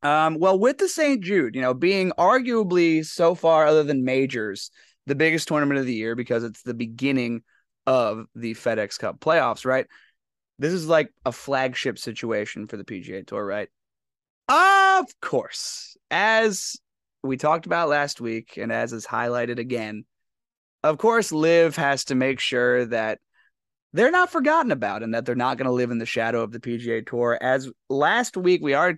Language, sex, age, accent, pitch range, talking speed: English, male, 20-39, American, 125-170 Hz, 180 wpm